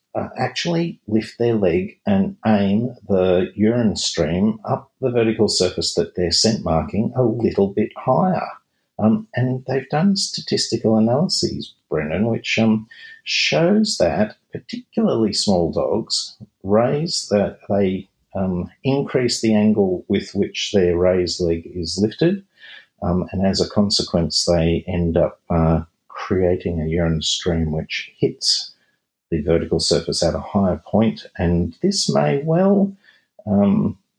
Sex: male